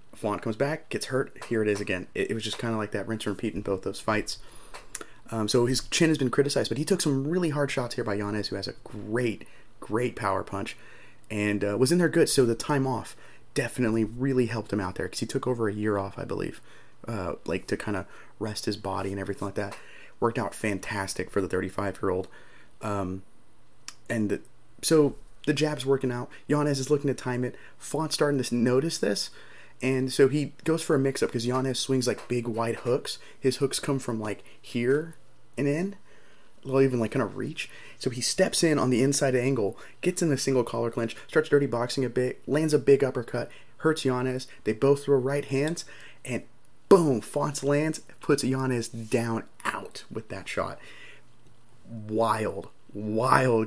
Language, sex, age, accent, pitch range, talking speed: English, male, 30-49, American, 110-140 Hz, 200 wpm